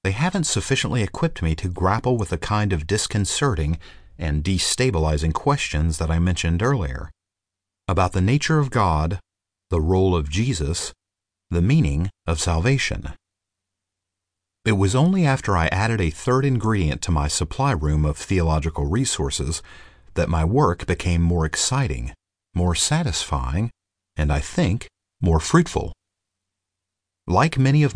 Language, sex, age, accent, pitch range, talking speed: English, male, 40-59, American, 80-110 Hz, 135 wpm